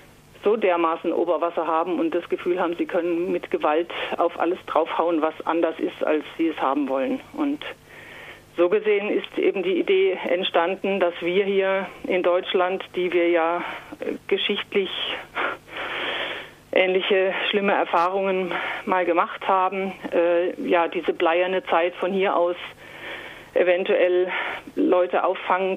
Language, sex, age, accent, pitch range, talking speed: German, female, 50-69, German, 170-195 Hz, 135 wpm